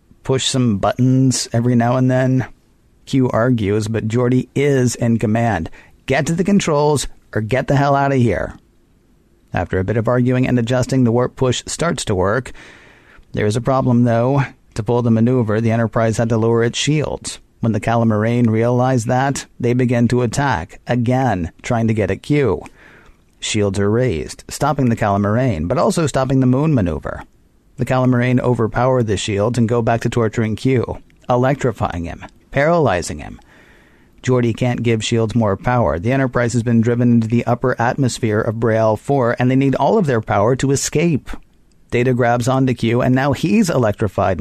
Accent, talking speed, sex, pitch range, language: American, 175 wpm, male, 115-130 Hz, English